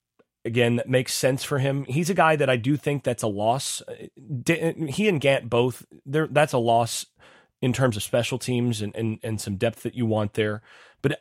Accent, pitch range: American, 105-135 Hz